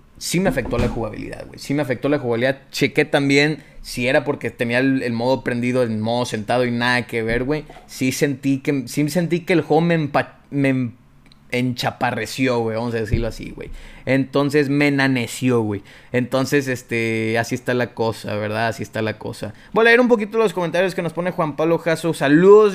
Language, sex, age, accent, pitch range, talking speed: Spanish, male, 30-49, Mexican, 125-165 Hz, 195 wpm